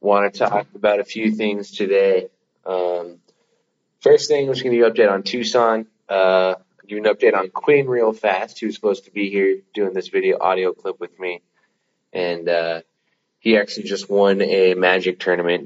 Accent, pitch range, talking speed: American, 90-135 Hz, 185 wpm